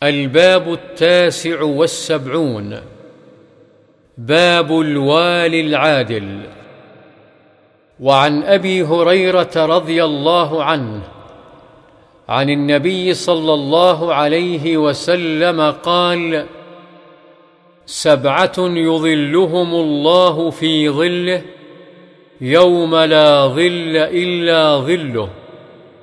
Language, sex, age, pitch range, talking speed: Arabic, male, 50-69, 150-175 Hz, 65 wpm